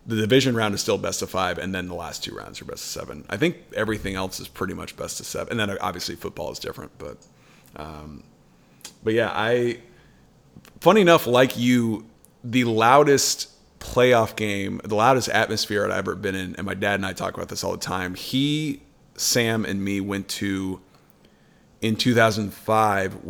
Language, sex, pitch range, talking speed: English, male, 100-115 Hz, 190 wpm